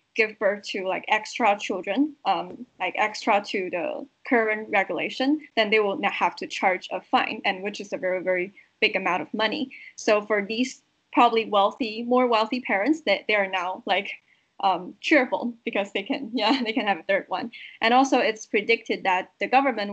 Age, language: 10-29, English